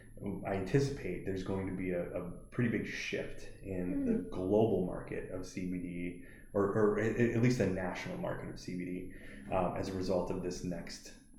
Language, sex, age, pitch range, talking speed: English, male, 20-39, 90-105 Hz, 175 wpm